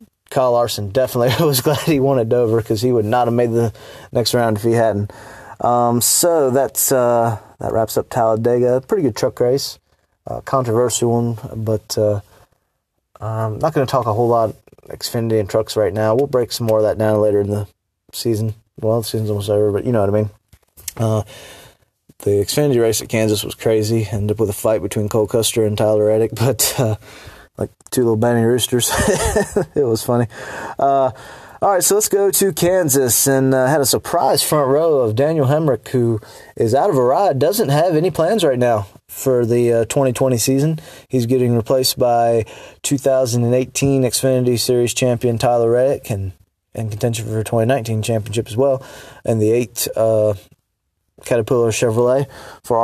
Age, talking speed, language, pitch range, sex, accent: 20-39, 185 wpm, English, 110-130 Hz, male, American